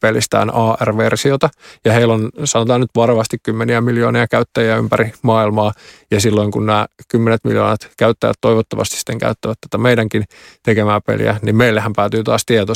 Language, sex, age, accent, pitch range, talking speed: Finnish, male, 20-39, native, 110-115 Hz, 150 wpm